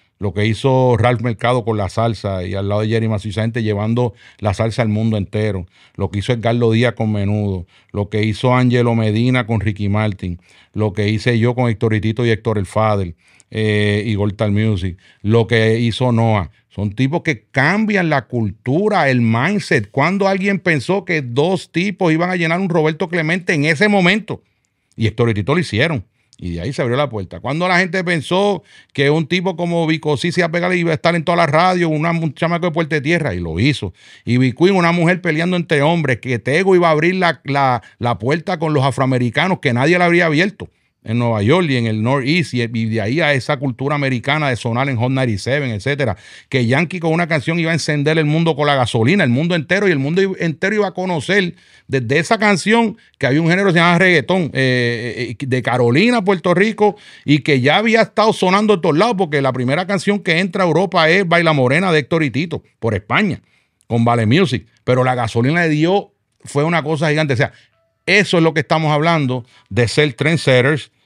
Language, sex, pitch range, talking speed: English, male, 115-170 Hz, 215 wpm